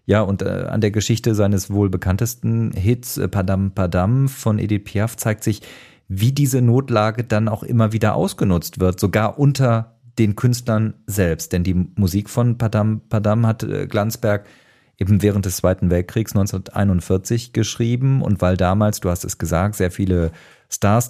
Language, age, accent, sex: German, 40-59, German, male